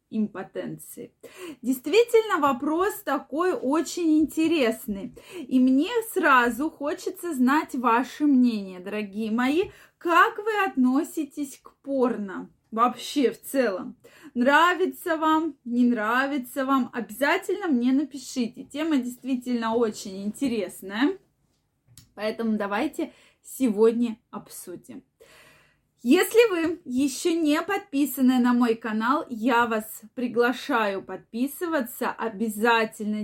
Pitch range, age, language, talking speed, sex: 230-310 Hz, 20-39, Russian, 95 wpm, female